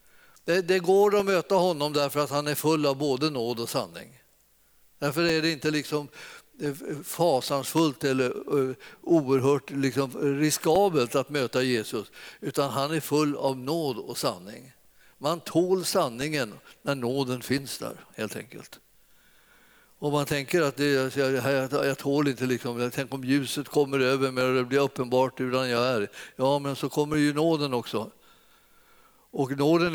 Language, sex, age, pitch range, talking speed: Swedish, male, 50-69, 135-165 Hz, 155 wpm